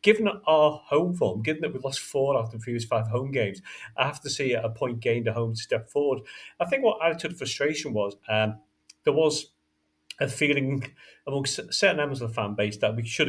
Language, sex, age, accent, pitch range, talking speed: English, male, 40-59, British, 115-155 Hz, 230 wpm